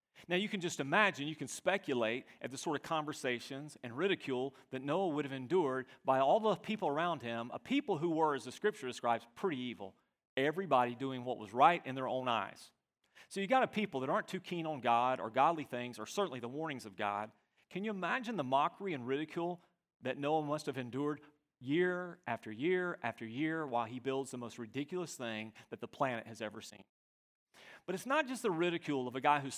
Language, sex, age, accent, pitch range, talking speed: English, male, 40-59, American, 125-180 Hz, 215 wpm